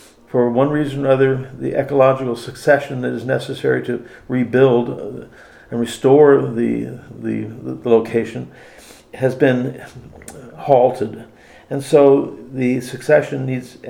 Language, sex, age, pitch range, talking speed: English, male, 50-69, 115-135 Hz, 115 wpm